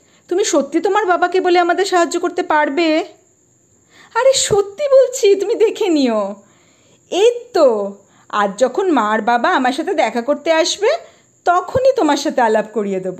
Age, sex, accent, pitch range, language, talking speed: 40-59, female, Indian, 225-345 Hz, English, 140 wpm